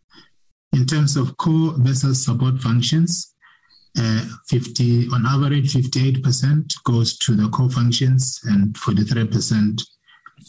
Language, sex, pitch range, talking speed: English, male, 115-135 Hz, 110 wpm